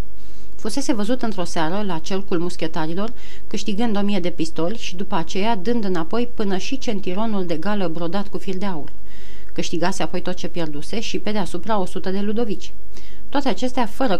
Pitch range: 175-220 Hz